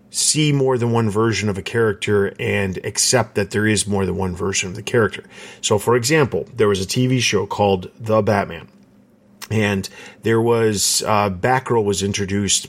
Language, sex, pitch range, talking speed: English, male, 100-120 Hz, 180 wpm